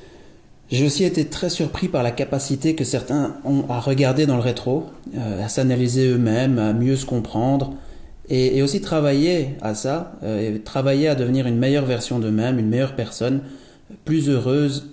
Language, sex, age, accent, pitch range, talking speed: French, male, 30-49, French, 115-140 Hz, 165 wpm